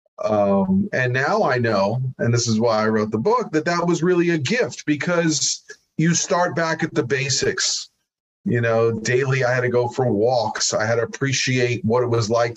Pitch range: 115-140 Hz